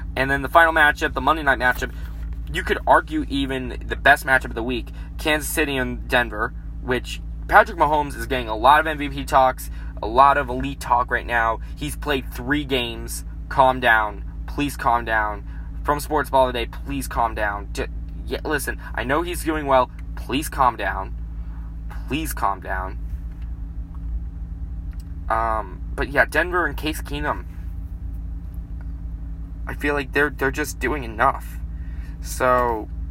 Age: 20-39